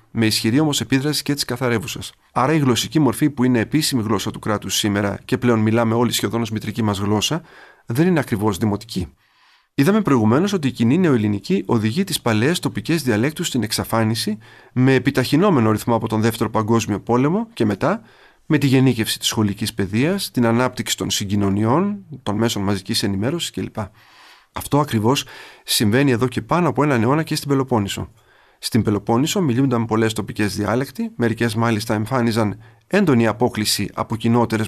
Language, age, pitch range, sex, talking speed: Greek, 30-49, 110-140 Hz, male, 165 wpm